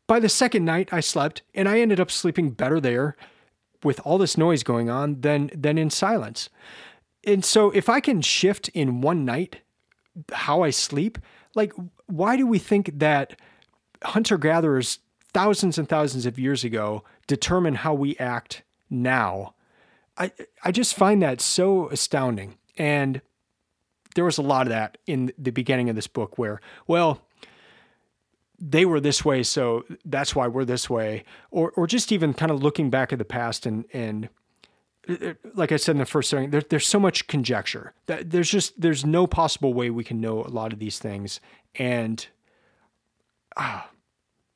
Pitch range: 120-175 Hz